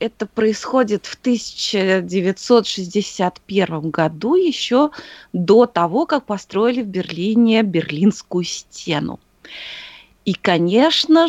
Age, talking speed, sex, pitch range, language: 20-39, 85 wpm, female, 180-255 Hz, Russian